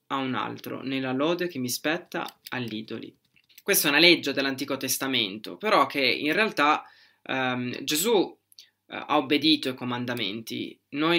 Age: 20-39